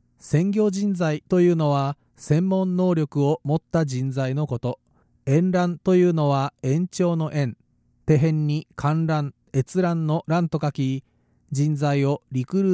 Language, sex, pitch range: Japanese, male, 140-175 Hz